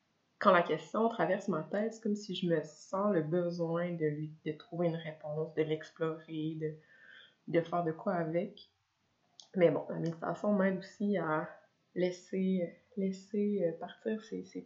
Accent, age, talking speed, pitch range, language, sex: Canadian, 20-39, 165 wpm, 165-210 Hz, French, female